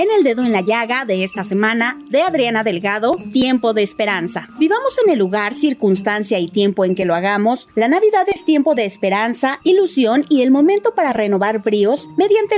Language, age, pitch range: Spanish, 30-49, 200-300 Hz